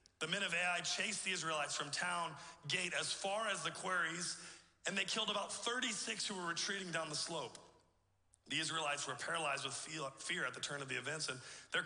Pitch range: 145-195 Hz